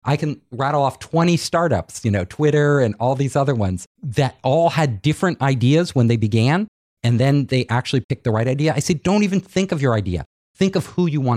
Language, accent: English, American